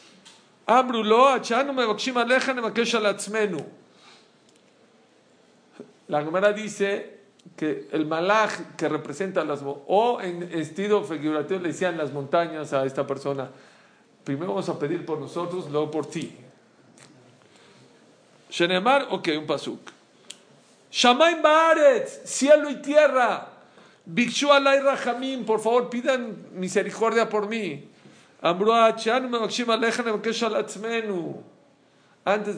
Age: 50-69